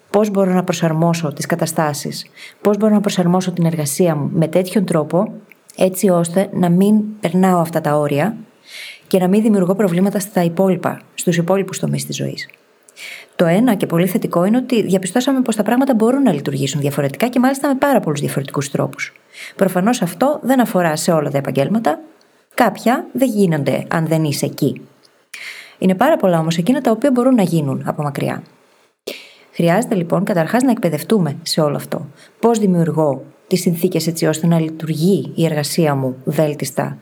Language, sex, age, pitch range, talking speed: Greek, female, 20-39, 160-215 Hz, 170 wpm